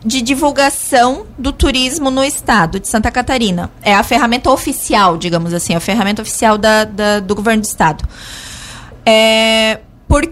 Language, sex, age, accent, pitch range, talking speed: Portuguese, female, 20-39, Brazilian, 205-265 Hz, 150 wpm